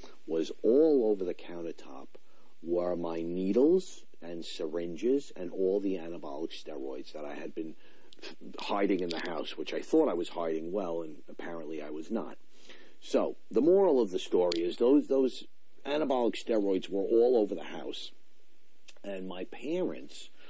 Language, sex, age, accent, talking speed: English, male, 50-69, American, 160 wpm